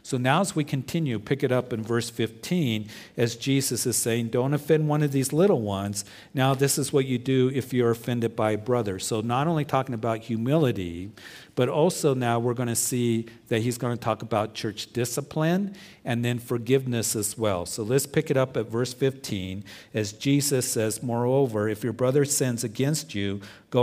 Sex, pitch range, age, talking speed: male, 110-135 Hz, 50-69, 200 wpm